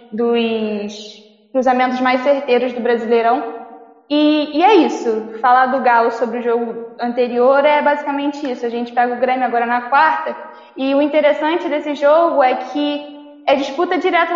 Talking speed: 160 wpm